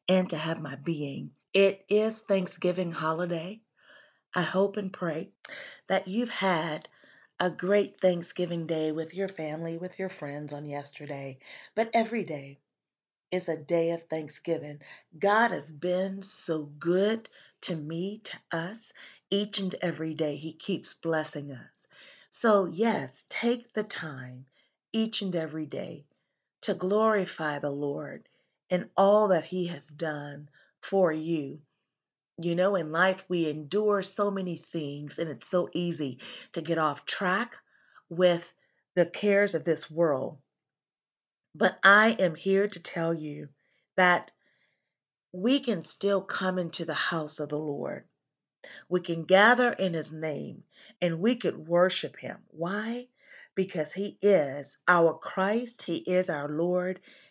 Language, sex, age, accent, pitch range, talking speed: English, female, 40-59, American, 160-195 Hz, 140 wpm